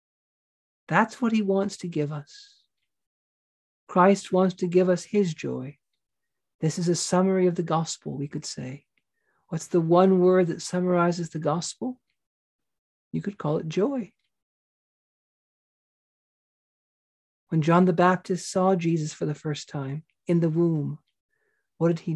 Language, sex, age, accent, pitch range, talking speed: English, male, 40-59, American, 155-185 Hz, 145 wpm